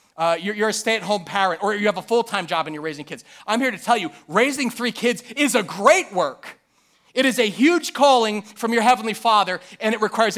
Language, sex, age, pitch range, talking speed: English, male, 40-59, 180-260 Hz, 225 wpm